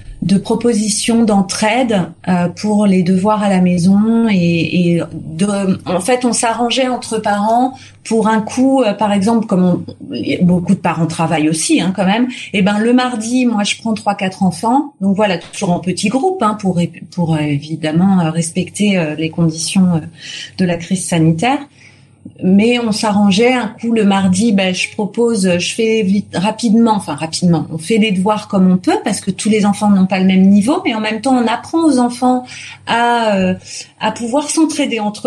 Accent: French